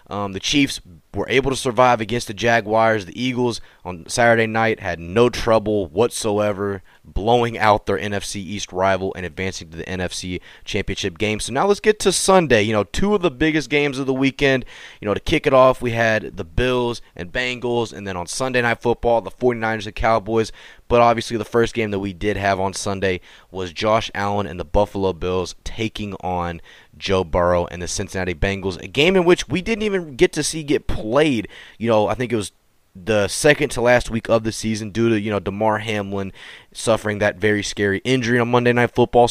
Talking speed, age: 210 wpm, 20-39